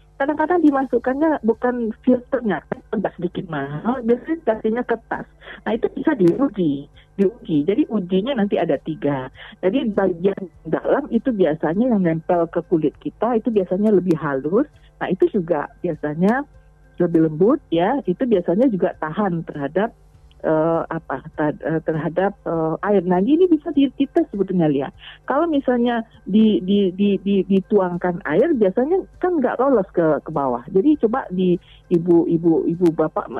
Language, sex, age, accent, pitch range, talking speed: Indonesian, female, 40-59, native, 165-225 Hz, 140 wpm